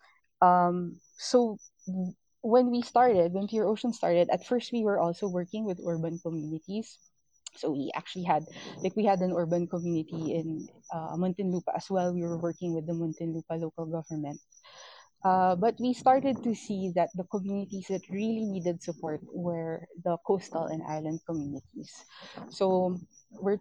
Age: 20-39